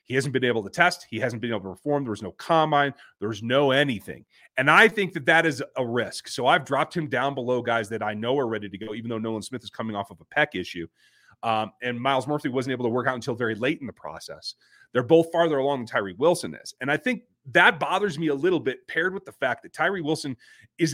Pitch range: 125-170 Hz